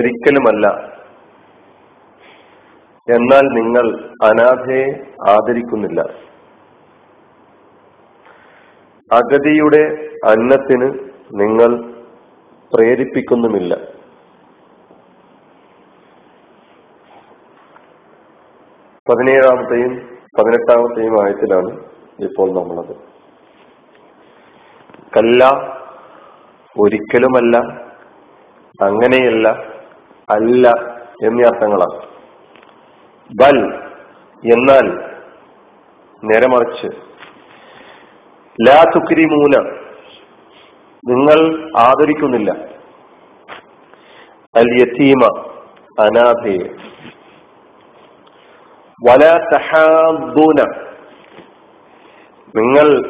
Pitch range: 120-150 Hz